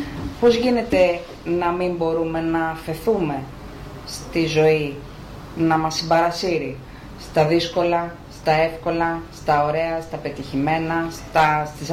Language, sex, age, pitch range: Greek, female, 30-49, 150-185 Hz